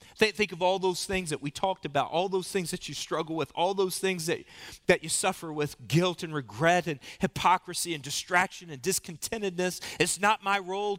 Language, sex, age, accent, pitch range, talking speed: English, male, 40-59, American, 170-220 Hz, 200 wpm